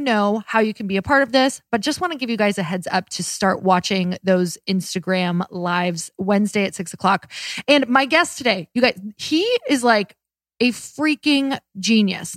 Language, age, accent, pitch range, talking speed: English, 20-39, American, 195-250 Hz, 200 wpm